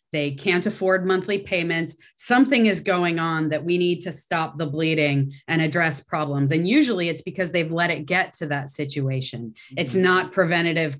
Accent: American